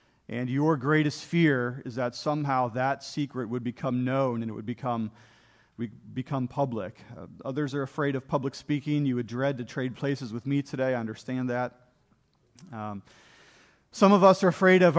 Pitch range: 125-165 Hz